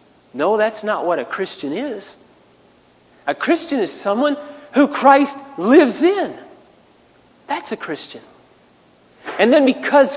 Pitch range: 170-275 Hz